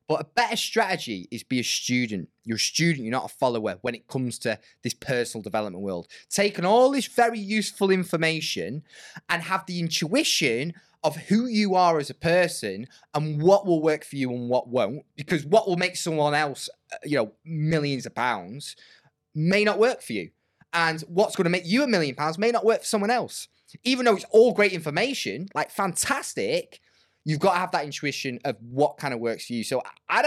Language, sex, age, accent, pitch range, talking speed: English, male, 20-39, British, 140-195 Hz, 205 wpm